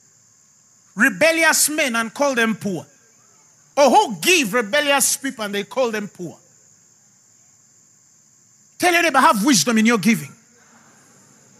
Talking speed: 125 wpm